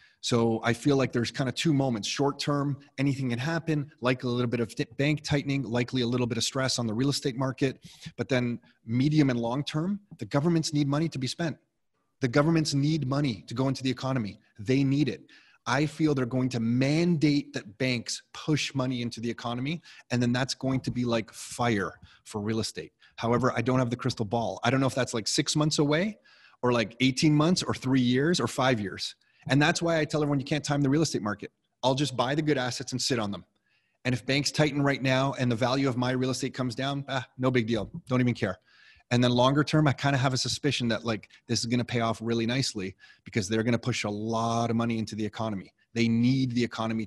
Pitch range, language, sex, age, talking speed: 115-145 Hz, English, male, 30-49, 235 wpm